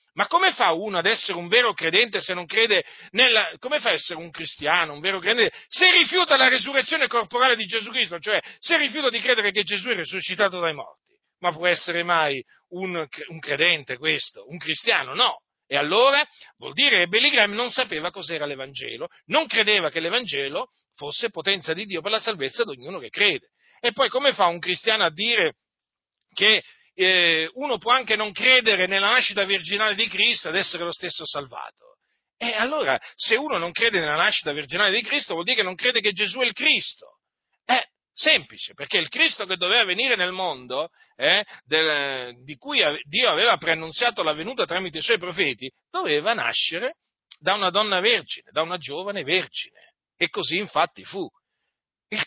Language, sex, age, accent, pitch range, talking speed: Italian, male, 40-59, native, 170-255 Hz, 185 wpm